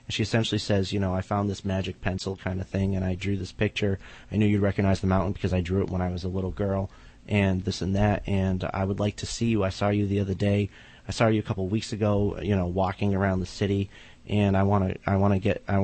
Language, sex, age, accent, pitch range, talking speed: English, male, 30-49, American, 95-110 Hz, 285 wpm